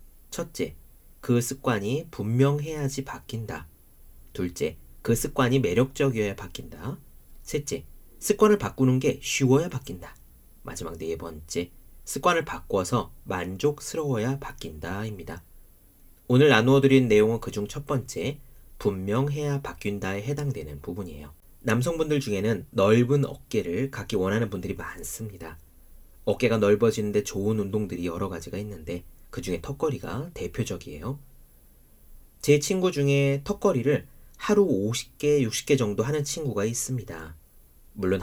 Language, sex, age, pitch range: Korean, male, 40-59, 85-135 Hz